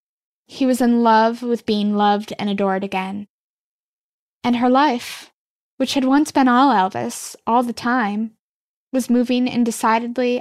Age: 10-29